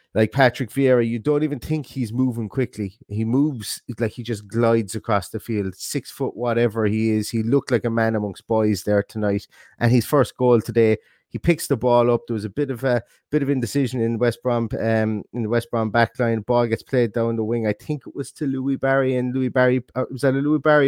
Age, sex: 30-49, male